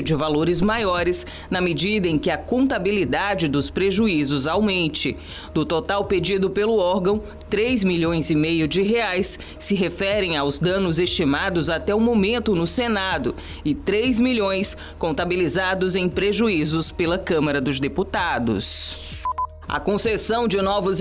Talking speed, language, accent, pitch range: 135 wpm, Portuguese, Brazilian, 170-210 Hz